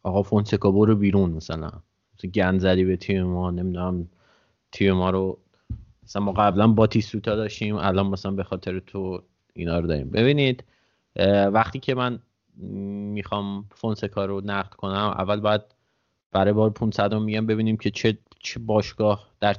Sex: male